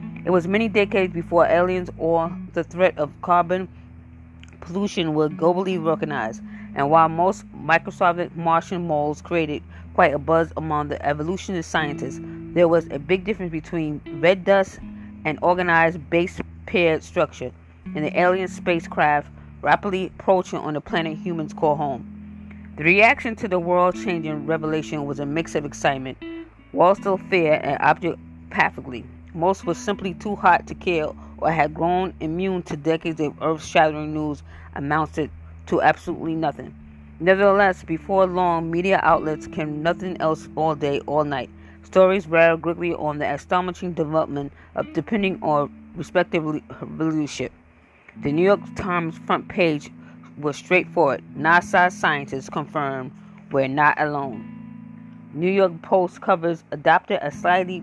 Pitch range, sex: 145-180 Hz, female